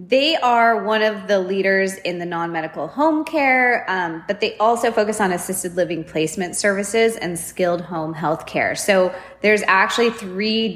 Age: 20-39